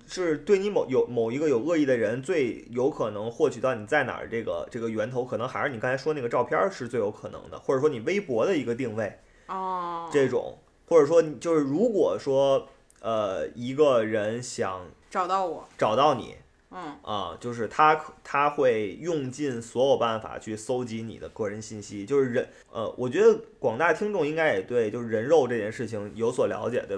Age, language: 20-39, Chinese